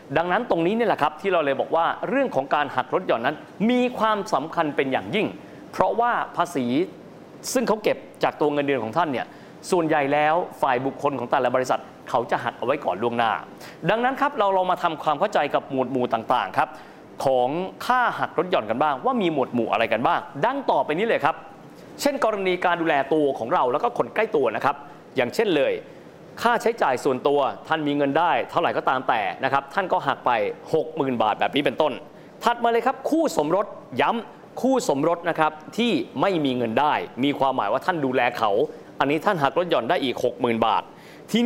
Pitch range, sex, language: 140-230 Hz, male, Thai